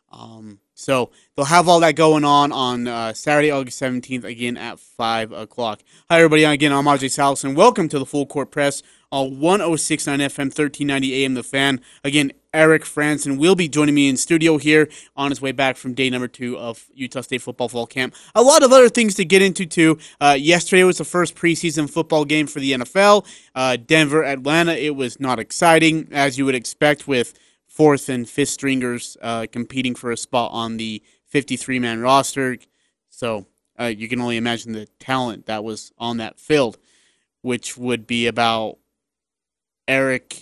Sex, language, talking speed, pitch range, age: male, English, 185 wpm, 125-155 Hz, 30-49